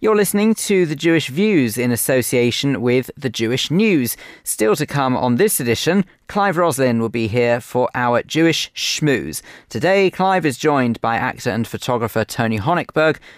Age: 30-49